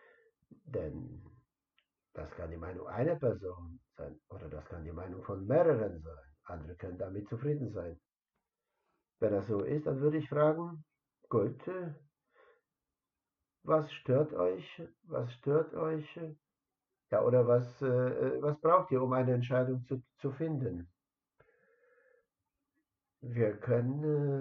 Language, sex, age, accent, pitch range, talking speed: Polish, male, 60-79, German, 115-155 Hz, 125 wpm